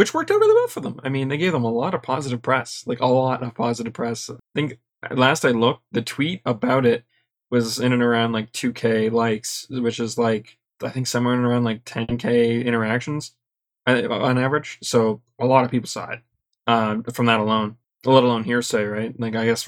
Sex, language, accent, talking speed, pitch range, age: male, English, American, 220 wpm, 115-135 Hz, 20-39